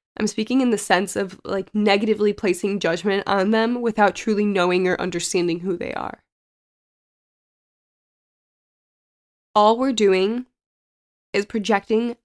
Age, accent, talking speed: 10-29, American, 120 wpm